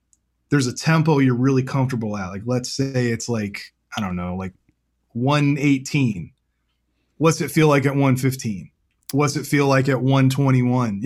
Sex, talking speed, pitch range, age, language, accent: male, 155 wpm, 125-145 Hz, 20-39, English, American